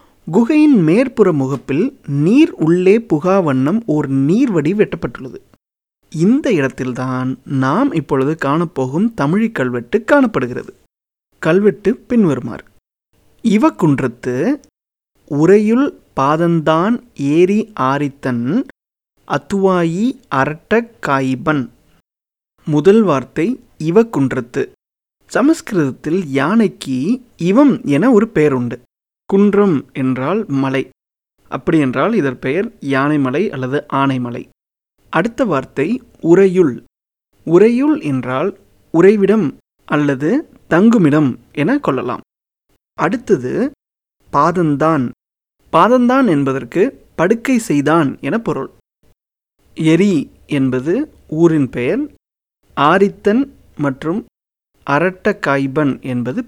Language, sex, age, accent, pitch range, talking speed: Tamil, male, 30-49, native, 135-220 Hz, 75 wpm